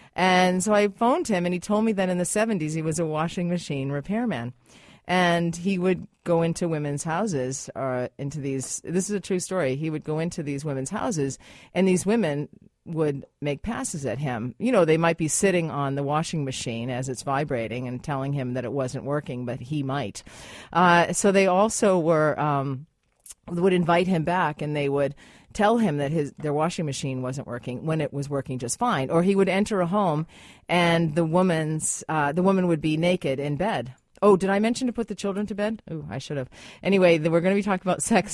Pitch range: 145-195 Hz